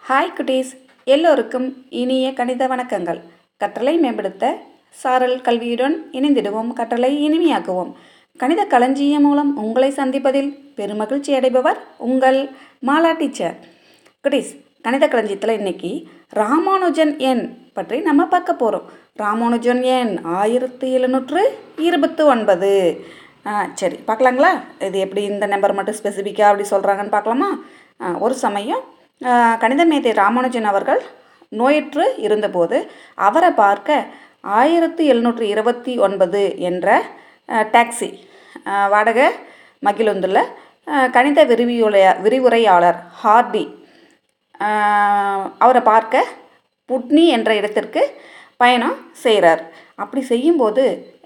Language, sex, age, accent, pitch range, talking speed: Tamil, female, 30-49, native, 210-285 Hz, 95 wpm